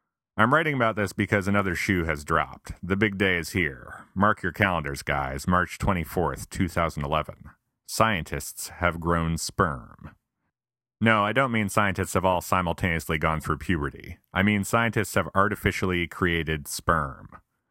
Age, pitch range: 30-49, 80-105 Hz